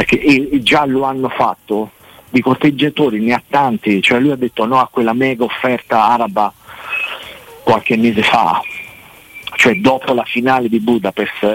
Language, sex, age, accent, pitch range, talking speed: Italian, male, 40-59, native, 110-130 Hz, 150 wpm